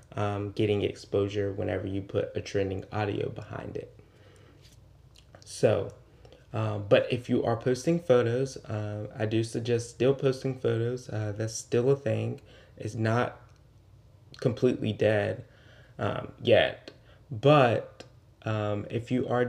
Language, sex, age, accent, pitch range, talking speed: English, male, 20-39, American, 105-125 Hz, 130 wpm